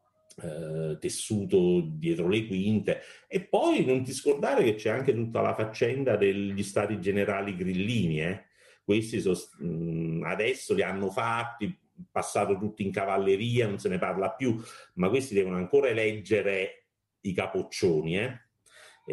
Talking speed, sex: 135 wpm, male